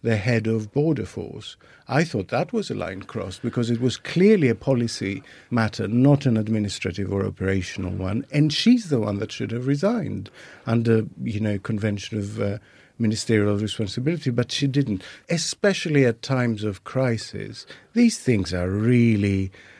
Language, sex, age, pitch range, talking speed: English, male, 50-69, 110-180 Hz, 160 wpm